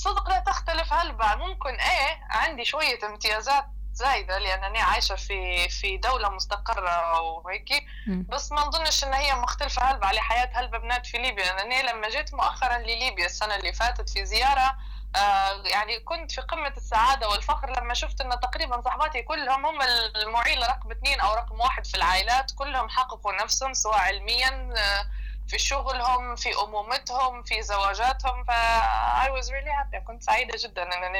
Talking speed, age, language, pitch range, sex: 155 wpm, 20-39, Arabic, 215-280 Hz, female